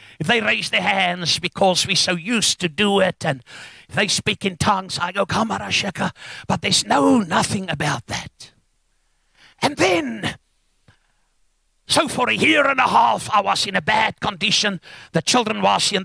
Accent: British